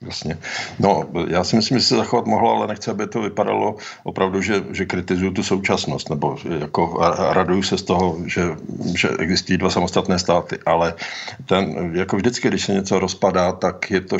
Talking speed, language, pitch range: 180 wpm, Slovak, 90-95 Hz